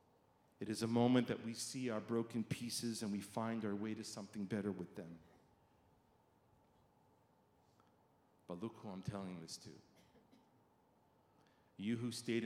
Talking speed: 145 wpm